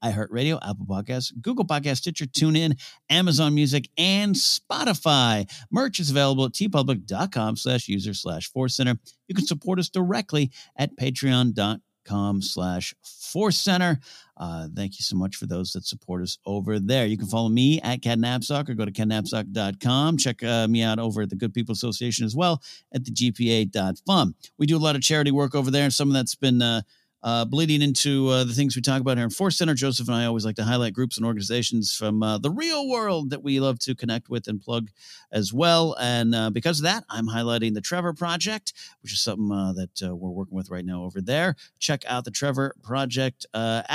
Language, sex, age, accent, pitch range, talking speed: English, male, 50-69, American, 110-150 Hz, 205 wpm